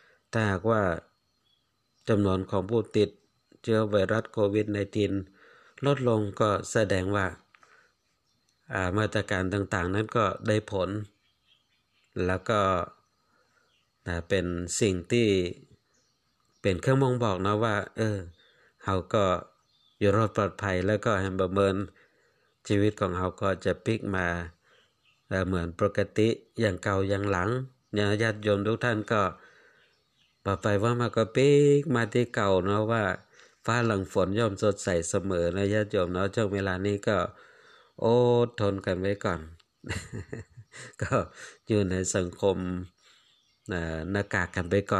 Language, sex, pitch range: Thai, male, 95-115 Hz